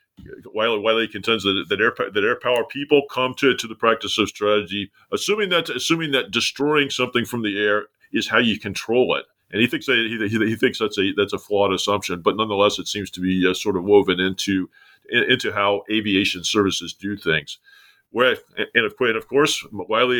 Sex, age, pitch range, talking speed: male, 40-59, 95-130 Hz, 205 wpm